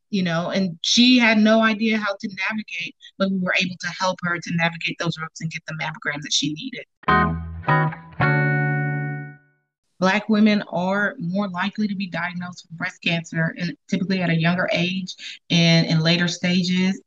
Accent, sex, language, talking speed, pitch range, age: American, female, English, 170 wpm, 175-205 Hz, 30-49